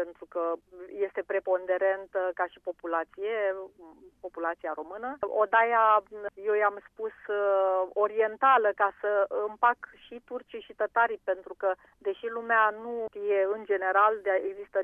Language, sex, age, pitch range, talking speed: Romanian, female, 40-59, 195-245 Hz, 120 wpm